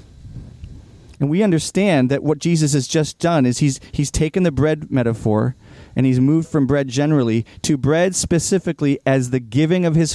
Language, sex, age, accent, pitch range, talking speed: English, male, 40-59, American, 120-155 Hz, 175 wpm